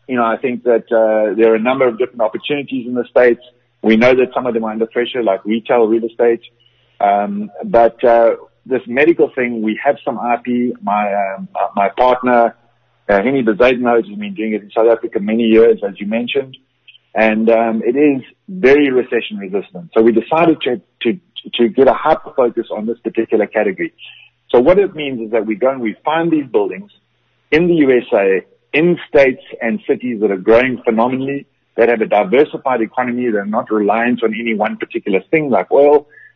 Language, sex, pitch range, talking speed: English, male, 110-130 Hz, 195 wpm